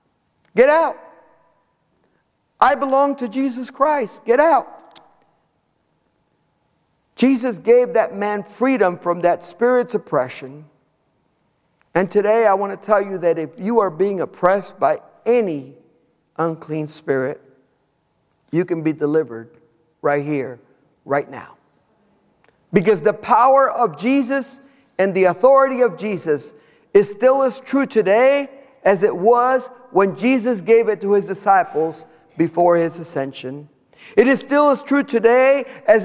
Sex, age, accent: male, 50-69, American